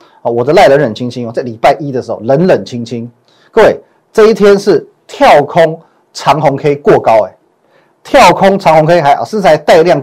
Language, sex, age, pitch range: Chinese, male, 30-49, 145-190 Hz